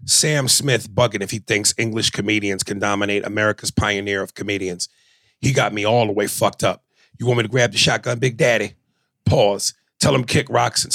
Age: 40-59